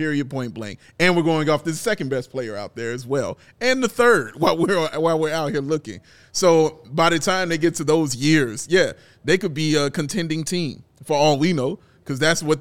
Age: 30-49